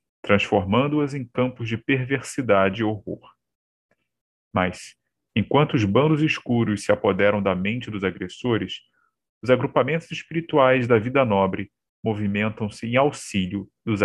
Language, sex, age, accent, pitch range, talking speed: Portuguese, male, 40-59, Brazilian, 110-155 Hz, 120 wpm